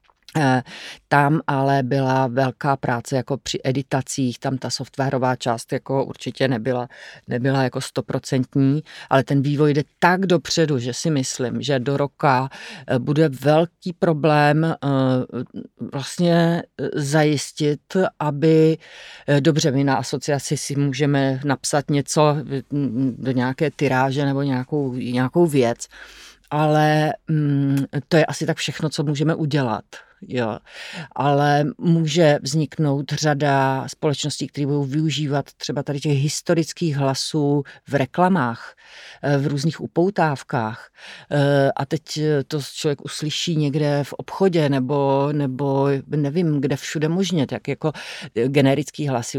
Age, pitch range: 40-59, 135-155 Hz